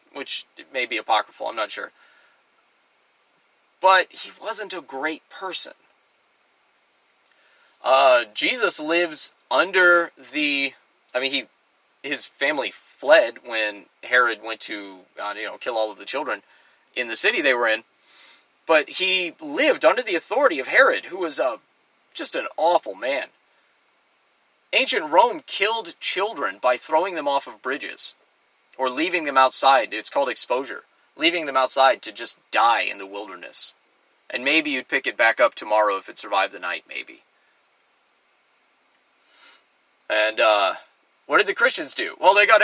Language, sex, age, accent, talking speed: English, male, 30-49, American, 150 wpm